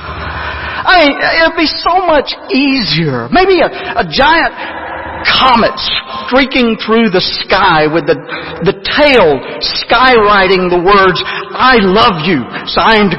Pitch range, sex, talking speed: 160-240 Hz, male, 125 wpm